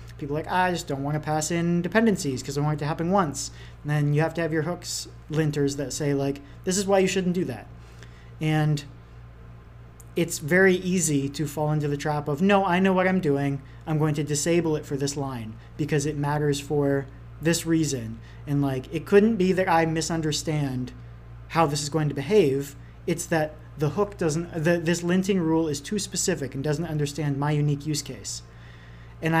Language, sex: English, male